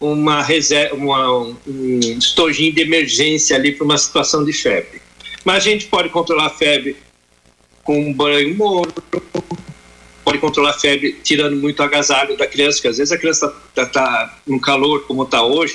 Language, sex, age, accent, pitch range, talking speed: Portuguese, male, 50-69, Brazilian, 140-175 Hz, 180 wpm